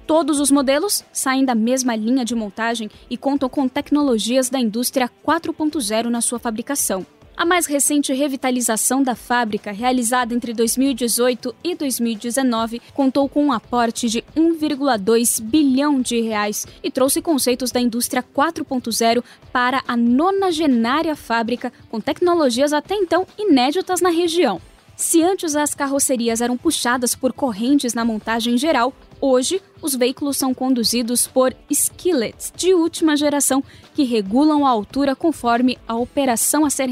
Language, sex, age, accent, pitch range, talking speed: Portuguese, female, 10-29, Brazilian, 235-285 Hz, 140 wpm